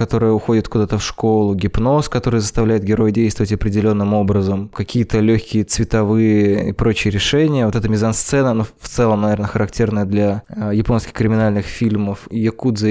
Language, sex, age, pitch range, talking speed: Russian, male, 20-39, 105-120 Hz, 155 wpm